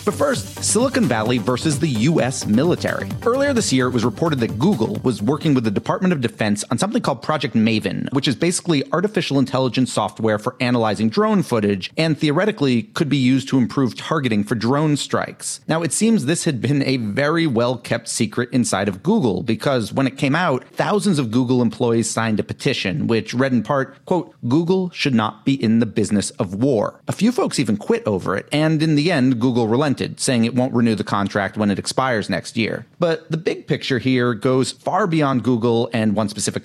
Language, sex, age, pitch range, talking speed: English, male, 30-49, 115-155 Hz, 205 wpm